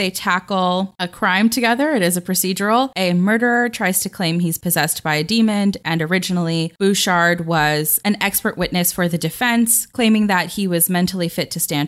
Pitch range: 160-200 Hz